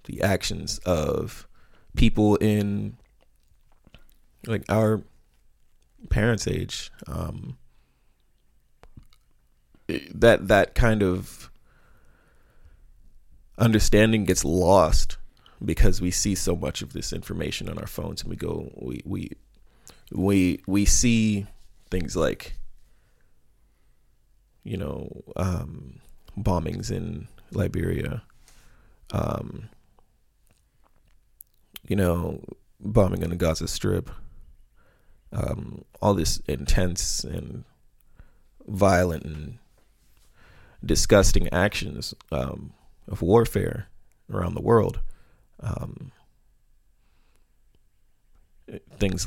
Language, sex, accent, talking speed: English, male, American, 85 wpm